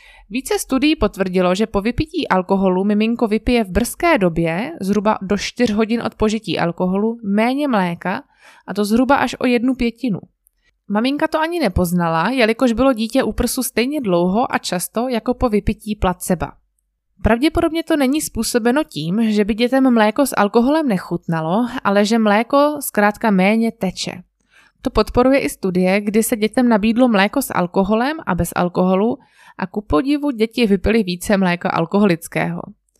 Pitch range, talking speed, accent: 185-255 Hz, 155 wpm, native